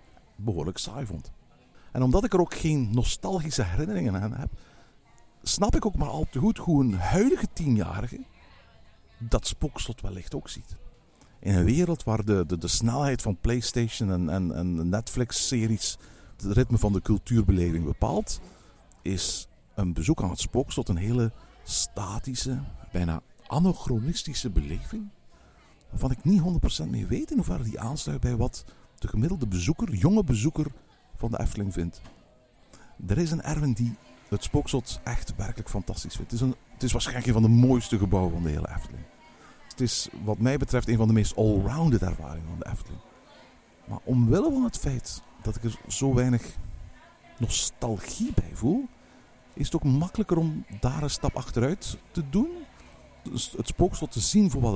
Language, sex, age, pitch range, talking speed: Dutch, male, 50-69, 100-140 Hz, 165 wpm